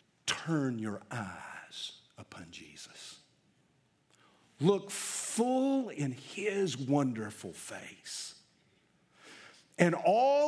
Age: 50-69